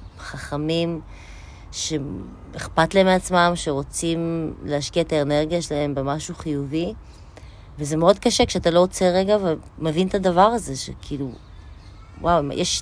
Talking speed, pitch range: 115 wpm, 135-205 Hz